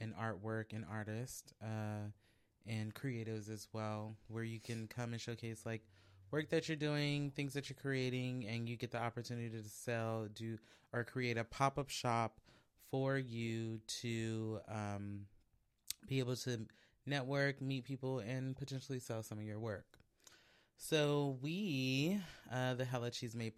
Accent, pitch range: American, 110-130 Hz